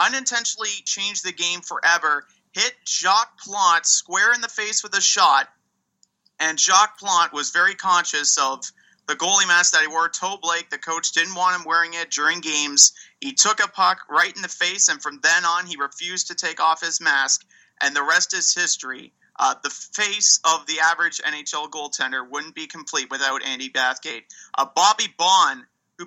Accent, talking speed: American, 185 wpm